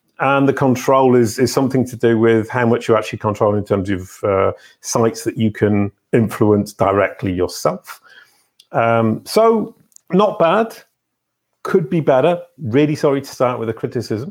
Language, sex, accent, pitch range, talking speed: English, male, British, 110-150 Hz, 165 wpm